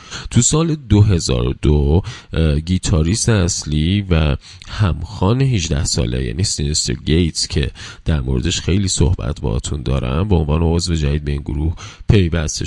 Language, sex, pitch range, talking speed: Persian, male, 75-105 Hz, 130 wpm